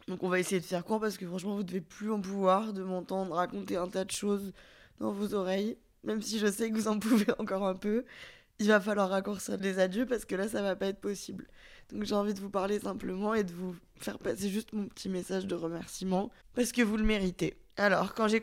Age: 20-39